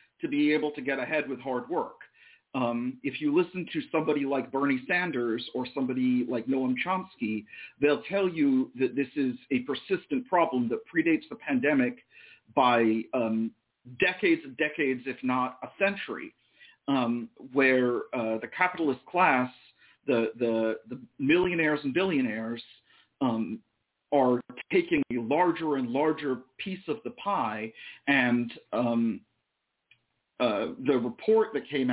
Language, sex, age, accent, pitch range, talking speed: English, male, 50-69, American, 120-185 Hz, 140 wpm